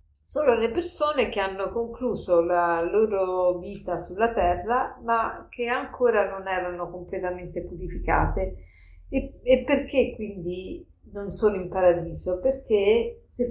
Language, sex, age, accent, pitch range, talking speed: Italian, female, 50-69, native, 180-245 Hz, 125 wpm